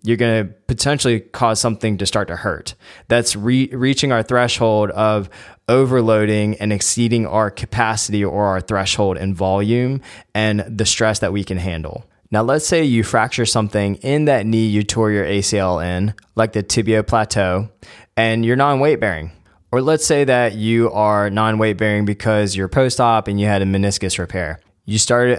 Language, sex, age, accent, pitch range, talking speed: English, male, 20-39, American, 100-115 Hz, 170 wpm